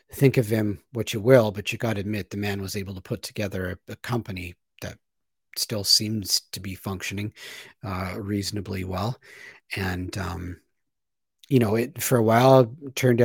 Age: 40-59